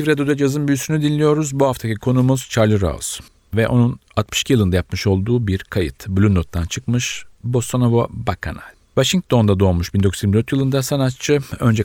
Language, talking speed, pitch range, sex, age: Turkish, 140 wpm, 95-120 Hz, male, 40-59